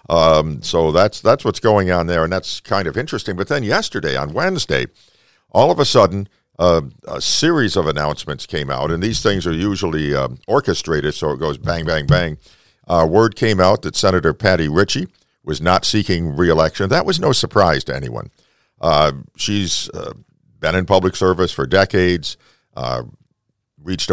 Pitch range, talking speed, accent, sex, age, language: 80-95 Hz, 175 wpm, American, male, 50-69, English